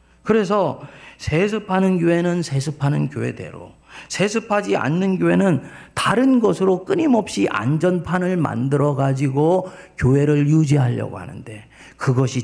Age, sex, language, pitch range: 40-59, male, Korean, 130-190 Hz